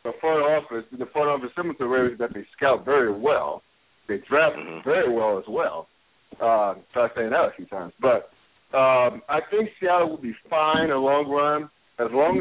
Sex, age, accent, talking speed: male, 50-69, American, 210 wpm